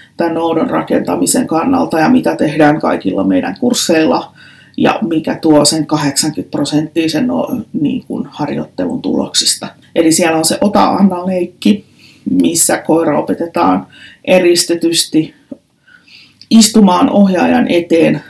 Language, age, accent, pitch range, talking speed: Finnish, 30-49, native, 160-250 Hz, 100 wpm